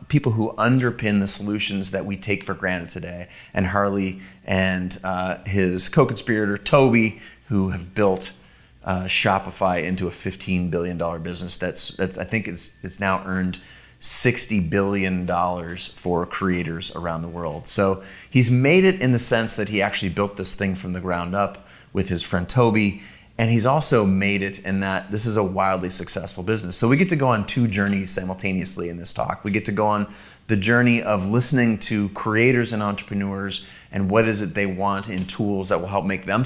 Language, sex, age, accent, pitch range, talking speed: English, male, 30-49, American, 90-105 Hz, 190 wpm